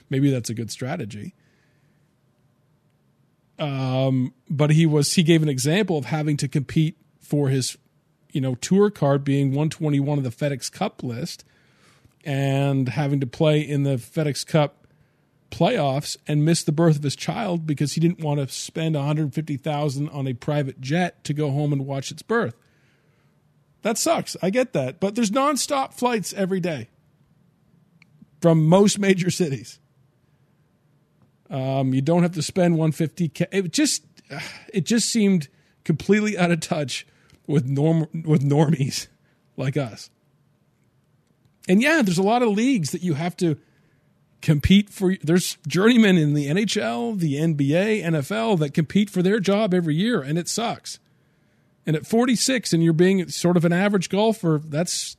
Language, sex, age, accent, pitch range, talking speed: English, male, 40-59, American, 145-185 Hz, 155 wpm